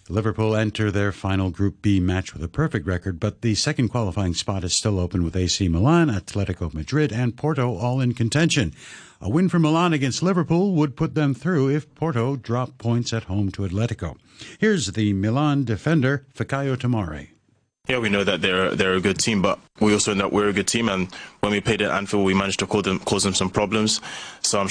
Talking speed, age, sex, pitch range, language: 215 wpm, 60-79, male, 95-140 Hz, English